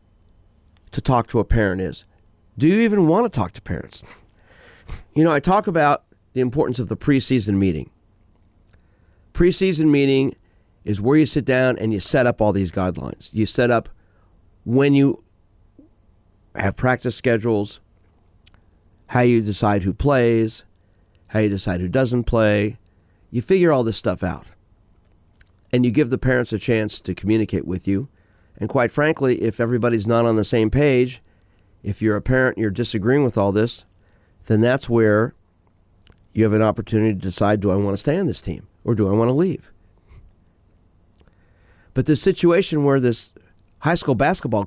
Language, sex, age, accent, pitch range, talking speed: English, male, 40-59, American, 95-130 Hz, 170 wpm